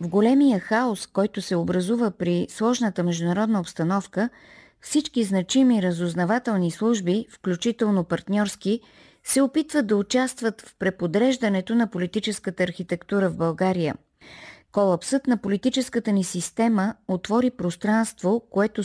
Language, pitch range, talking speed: Bulgarian, 180-230 Hz, 110 wpm